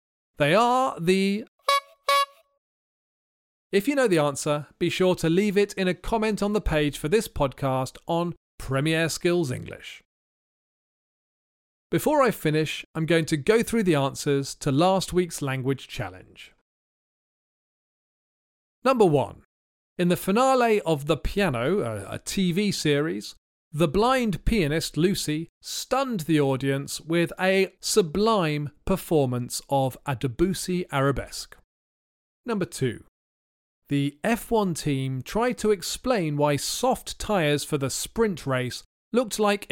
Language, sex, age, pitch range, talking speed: English, male, 40-59, 140-205 Hz, 125 wpm